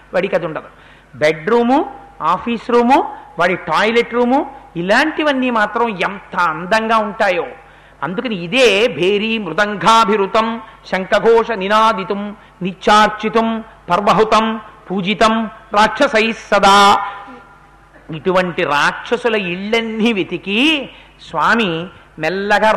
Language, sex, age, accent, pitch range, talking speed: Telugu, male, 50-69, native, 195-250 Hz, 80 wpm